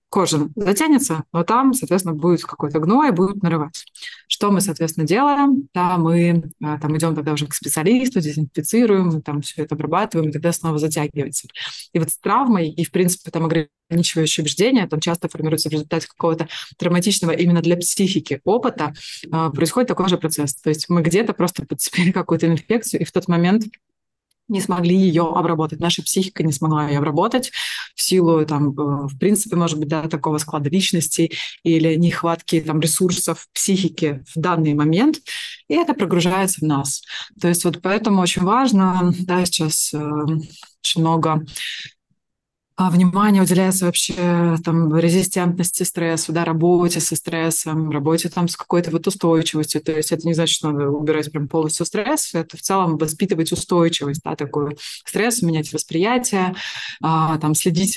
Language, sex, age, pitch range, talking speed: Russian, female, 20-39, 155-180 Hz, 160 wpm